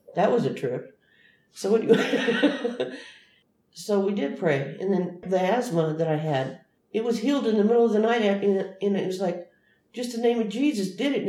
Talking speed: 195 wpm